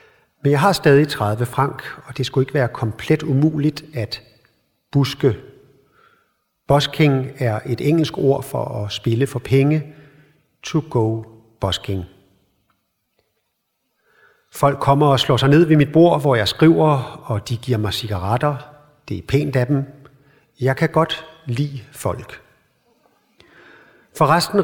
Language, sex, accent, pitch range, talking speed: English, male, Danish, 120-150 Hz, 135 wpm